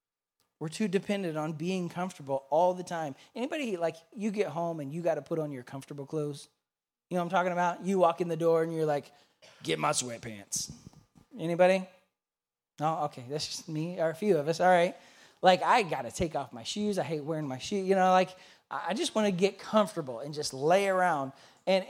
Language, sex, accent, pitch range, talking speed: English, male, American, 145-180 Hz, 220 wpm